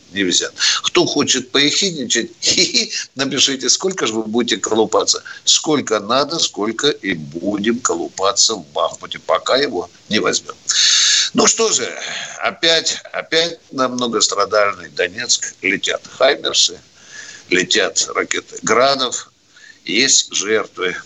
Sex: male